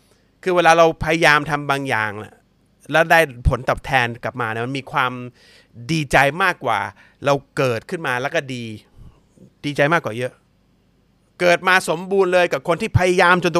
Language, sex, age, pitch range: Thai, male, 30-49, 135-185 Hz